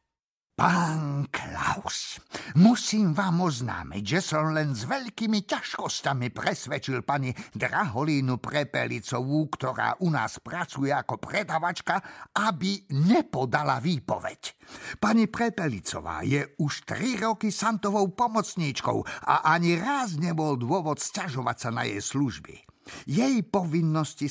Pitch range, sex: 130-195 Hz, male